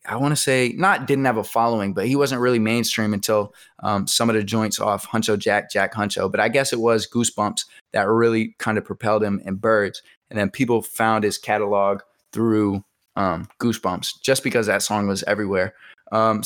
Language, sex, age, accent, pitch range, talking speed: English, male, 20-39, American, 105-125 Hz, 200 wpm